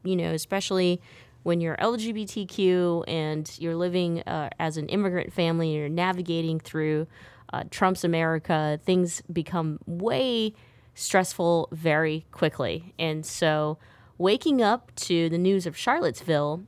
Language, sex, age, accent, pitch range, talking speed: English, female, 20-39, American, 155-200 Hz, 130 wpm